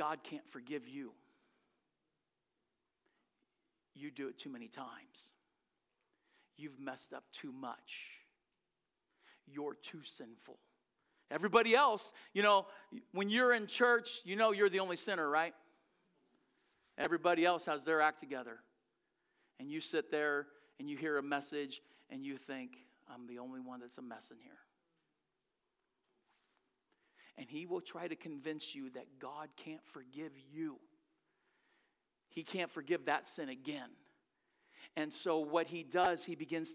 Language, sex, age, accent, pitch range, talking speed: English, male, 50-69, American, 155-240 Hz, 140 wpm